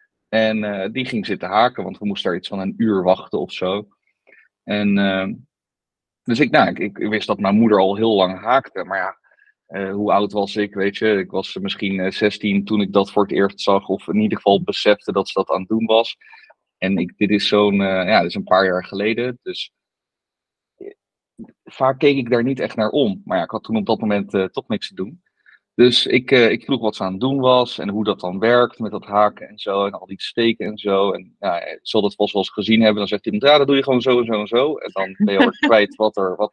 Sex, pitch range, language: male, 100-130 Hz, Dutch